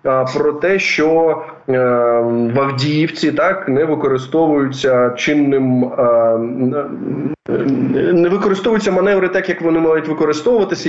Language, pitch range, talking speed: Ukrainian, 125-160 Hz, 100 wpm